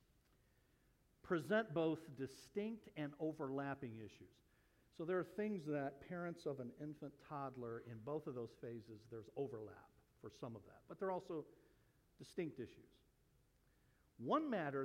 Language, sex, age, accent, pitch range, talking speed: English, male, 60-79, American, 115-150 Hz, 135 wpm